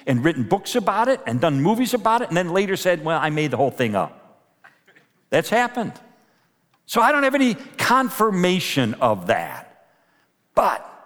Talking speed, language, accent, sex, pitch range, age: 175 wpm, English, American, male, 145-225 Hz, 50-69